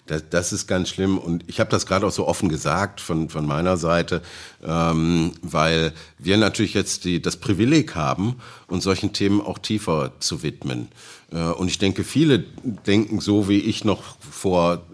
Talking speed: 175 wpm